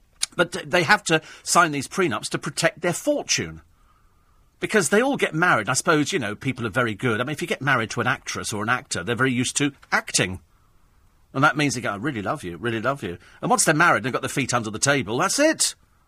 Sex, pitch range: male, 120-185 Hz